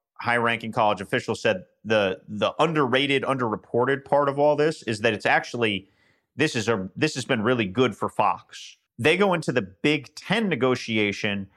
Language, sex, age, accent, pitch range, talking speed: English, male, 40-59, American, 115-155 Hz, 175 wpm